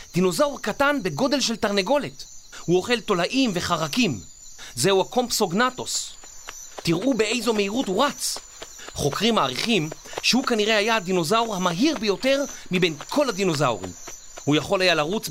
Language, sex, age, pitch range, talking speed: Hebrew, male, 40-59, 160-240 Hz, 120 wpm